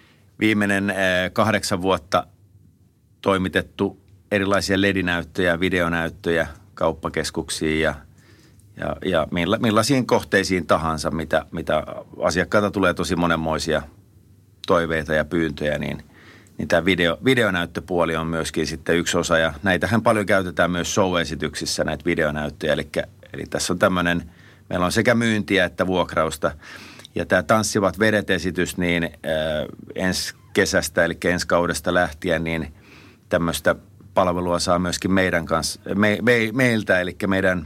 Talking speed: 120 wpm